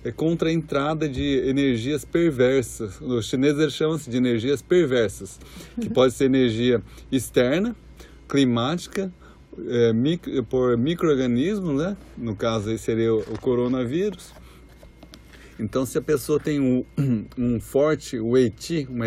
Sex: male